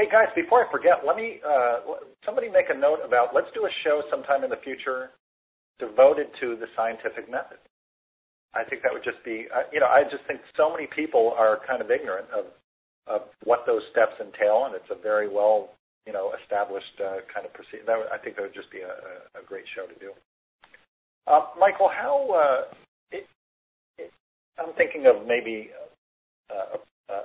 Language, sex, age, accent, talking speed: English, male, 50-69, American, 185 wpm